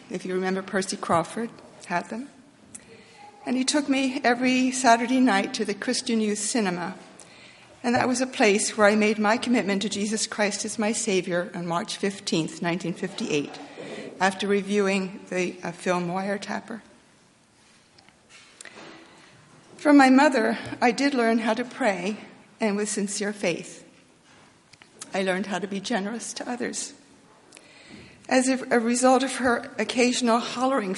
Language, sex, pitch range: English, female, 185-240 Hz